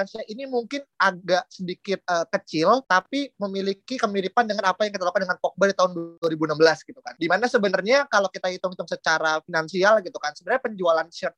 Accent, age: native, 20-39